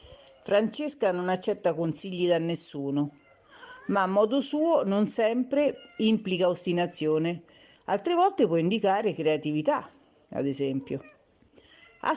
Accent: native